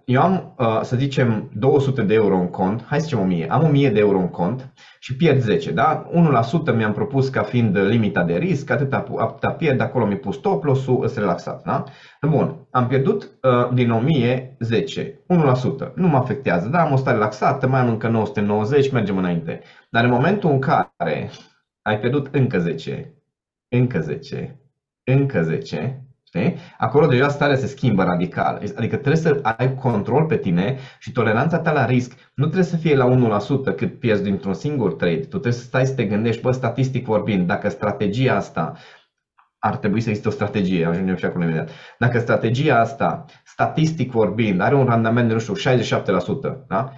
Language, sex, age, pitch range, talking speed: Romanian, male, 20-39, 110-140 Hz, 180 wpm